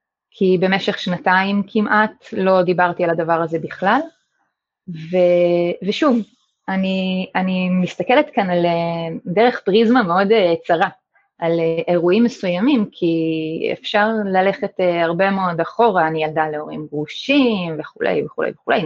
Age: 20-39